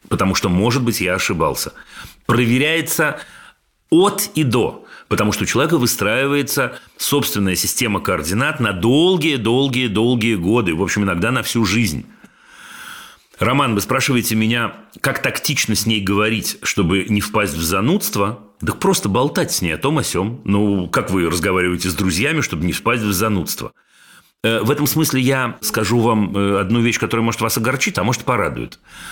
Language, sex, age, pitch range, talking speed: Russian, male, 40-59, 100-135 Hz, 155 wpm